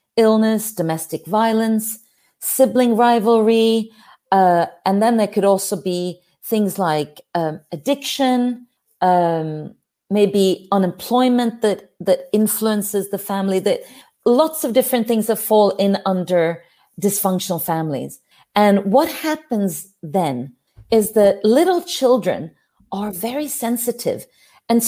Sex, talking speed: female, 115 wpm